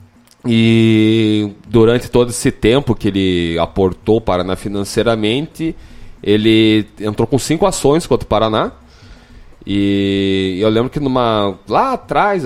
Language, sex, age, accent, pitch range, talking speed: Portuguese, male, 20-39, Brazilian, 95-120 Hz, 130 wpm